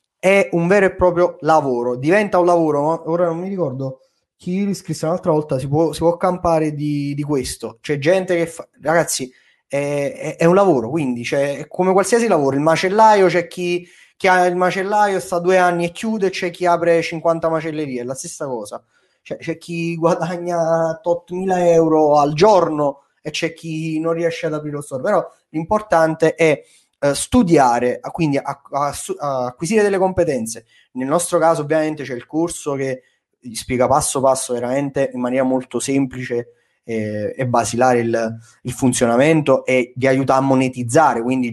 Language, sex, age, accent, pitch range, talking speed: Italian, male, 20-39, native, 130-170 Hz, 185 wpm